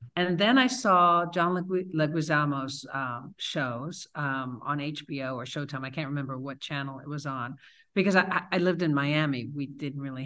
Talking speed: 180 wpm